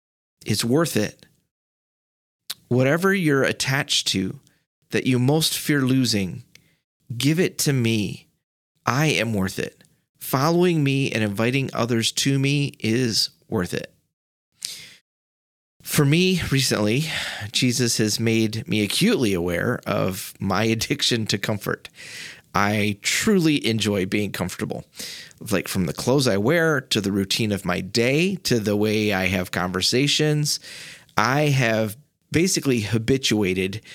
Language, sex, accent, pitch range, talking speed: English, male, American, 105-140 Hz, 125 wpm